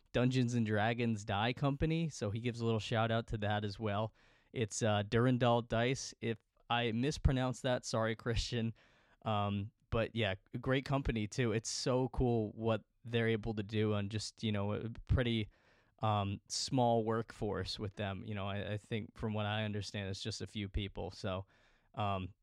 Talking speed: 180 wpm